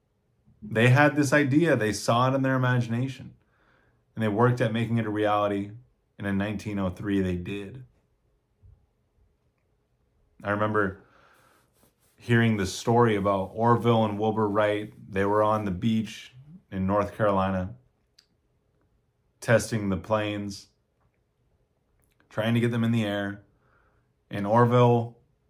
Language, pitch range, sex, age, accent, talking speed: English, 105-120 Hz, male, 30-49, American, 125 wpm